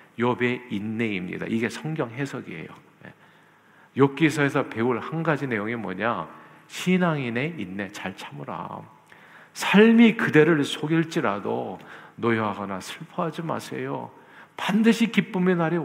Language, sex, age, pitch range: Korean, male, 50-69, 120-170 Hz